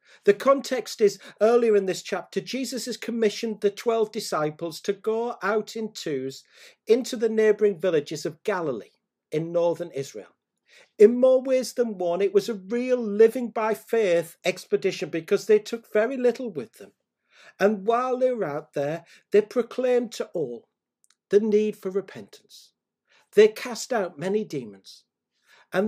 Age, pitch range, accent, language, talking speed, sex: 50-69, 180-225 Hz, British, English, 155 wpm, male